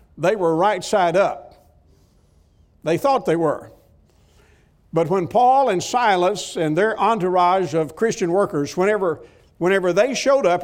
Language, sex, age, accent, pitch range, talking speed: English, male, 60-79, American, 160-210 Hz, 140 wpm